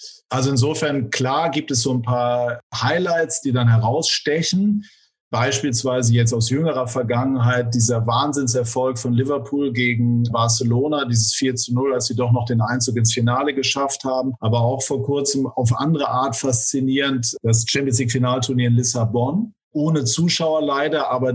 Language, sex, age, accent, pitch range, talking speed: German, male, 50-69, German, 120-145 Hz, 150 wpm